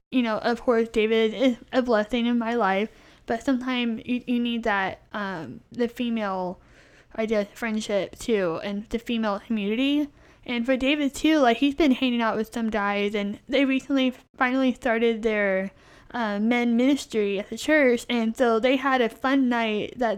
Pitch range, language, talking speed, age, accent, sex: 220-260 Hz, English, 180 wpm, 10-29, American, female